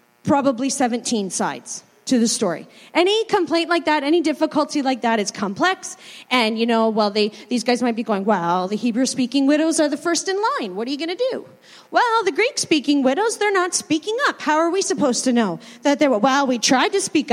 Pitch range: 245-360 Hz